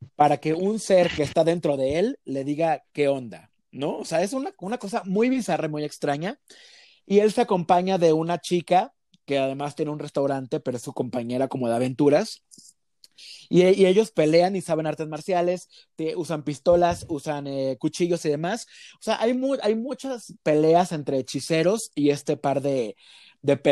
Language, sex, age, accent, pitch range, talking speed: Spanish, male, 30-49, Mexican, 145-190 Hz, 185 wpm